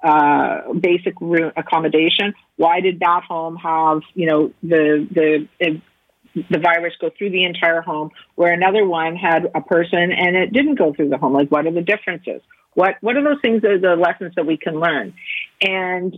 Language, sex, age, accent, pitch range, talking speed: English, female, 50-69, American, 165-210 Hz, 195 wpm